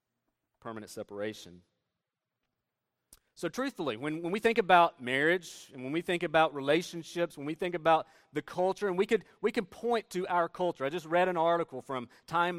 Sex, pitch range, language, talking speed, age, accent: male, 150-185 Hz, English, 180 wpm, 40-59, American